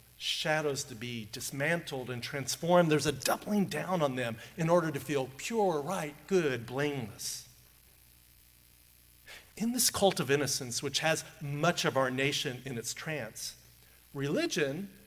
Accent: American